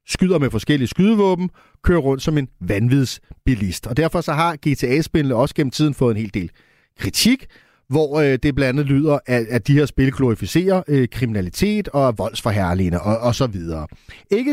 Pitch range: 130-180 Hz